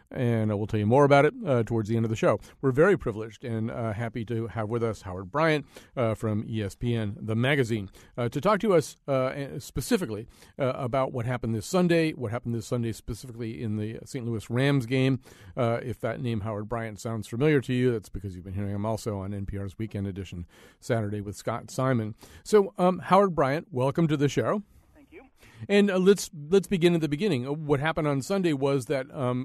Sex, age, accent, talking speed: male, 40-59, American, 215 wpm